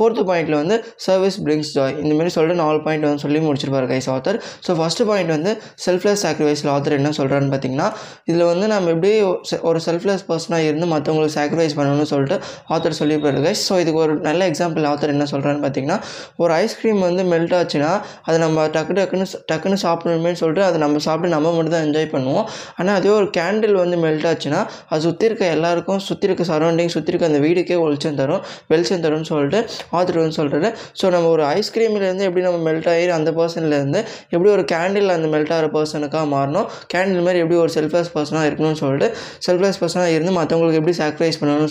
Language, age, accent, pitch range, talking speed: Tamil, 20-39, native, 155-185 Hz, 180 wpm